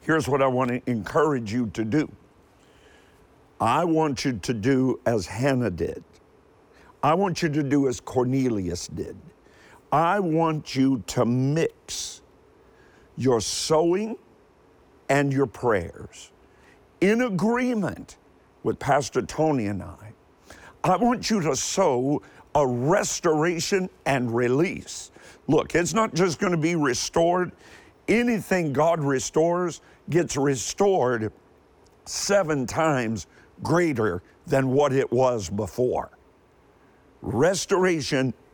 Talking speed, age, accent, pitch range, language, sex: 110 wpm, 50-69, American, 125-175 Hz, English, male